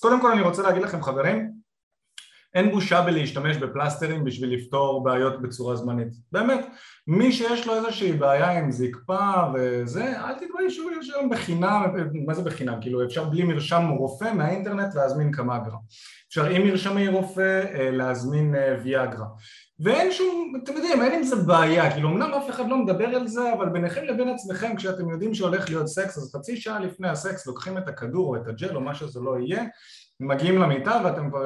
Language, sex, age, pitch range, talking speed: Hebrew, male, 30-49, 135-195 Hz, 180 wpm